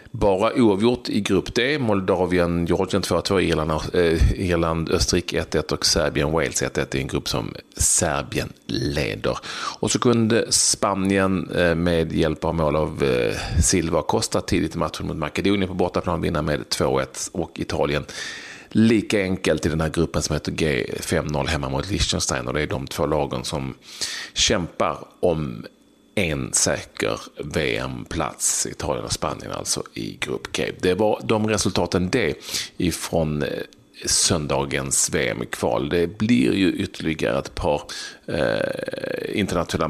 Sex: male